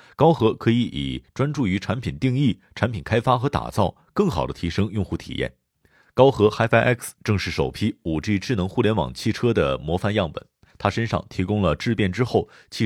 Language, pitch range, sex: Chinese, 90-115 Hz, male